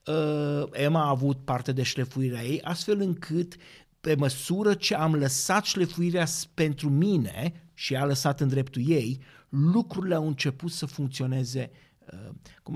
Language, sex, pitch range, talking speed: Romanian, male, 130-165 Hz, 135 wpm